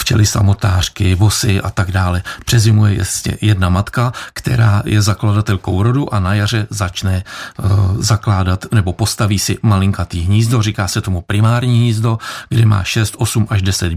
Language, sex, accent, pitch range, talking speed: Czech, male, native, 100-115 Hz, 155 wpm